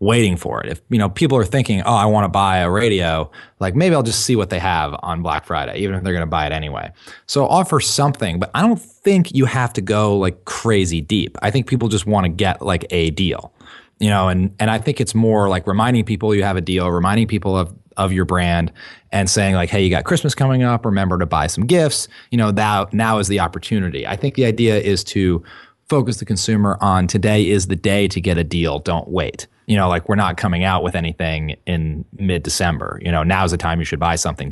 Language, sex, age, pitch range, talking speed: English, male, 20-39, 90-115 Hz, 240 wpm